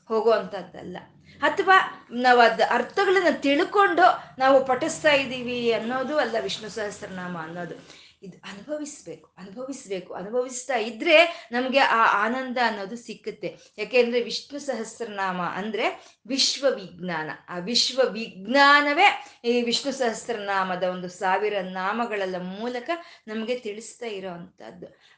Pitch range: 200-275 Hz